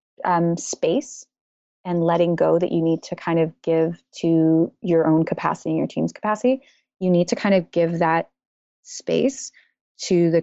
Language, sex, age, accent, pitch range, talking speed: English, female, 20-39, American, 165-190 Hz, 175 wpm